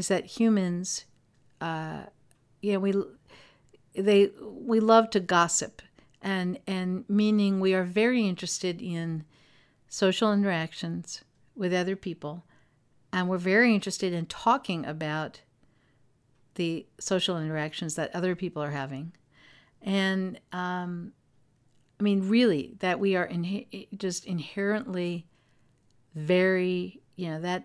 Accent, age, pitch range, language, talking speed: American, 50-69, 150-195 Hz, English, 115 wpm